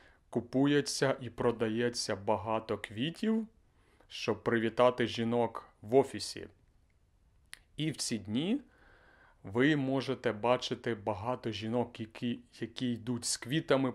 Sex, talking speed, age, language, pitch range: male, 105 wpm, 30-49, Ukrainian, 110-130 Hz